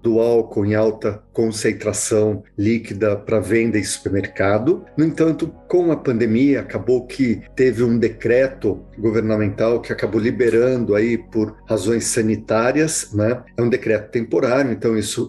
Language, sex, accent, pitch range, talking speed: Portuguese, male, Brazilian, 110-135 Hz, 135 wpm